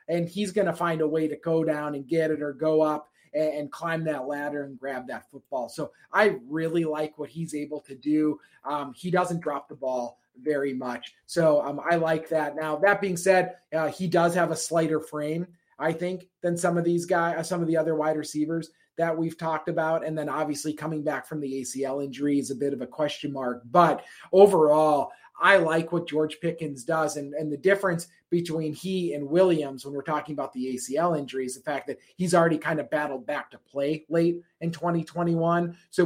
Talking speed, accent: 215 wpm, American